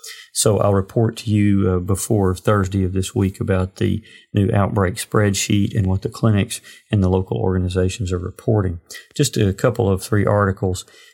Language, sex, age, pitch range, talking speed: English, male, 40-59, 95-110 Hz, 170 wpm